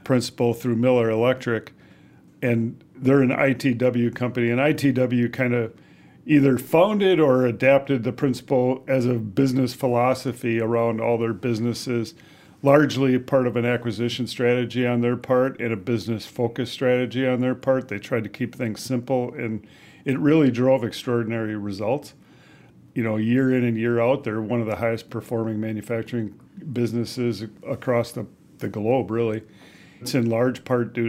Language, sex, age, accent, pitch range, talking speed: English, male, 50-69, American, 115-130 Hz, 155 wpm